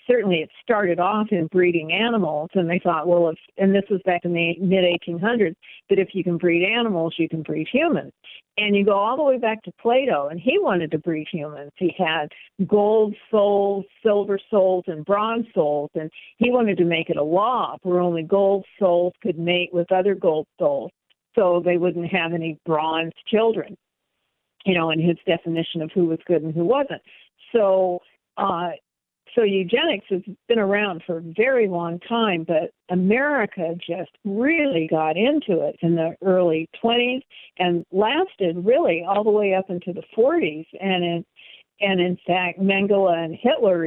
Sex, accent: female, American